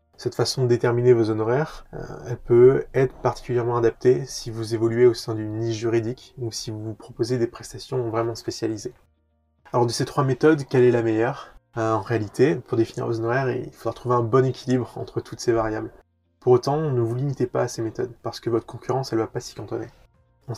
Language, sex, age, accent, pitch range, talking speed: French, male, 20-39, French, 110-125 Hz, 215 wpm